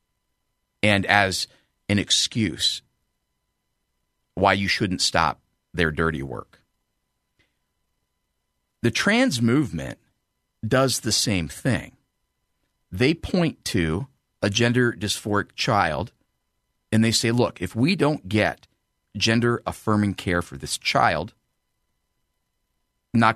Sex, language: male, English